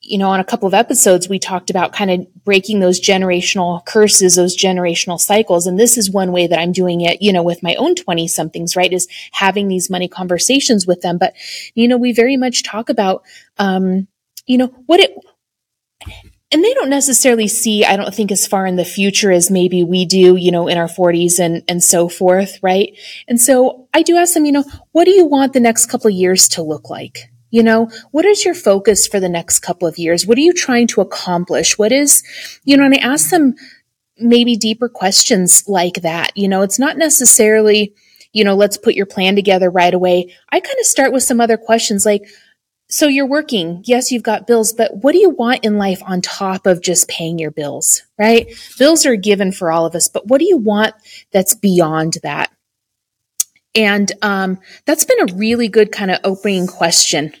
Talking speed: 215 wpm